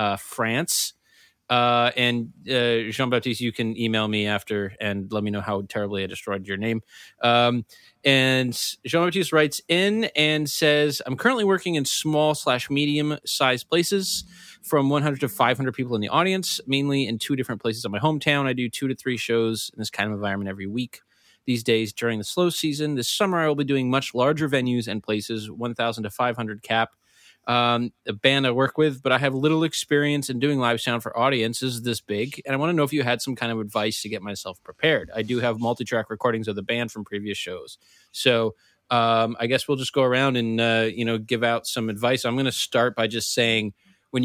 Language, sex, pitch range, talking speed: English, male, 105-130 Hz, 215 wpm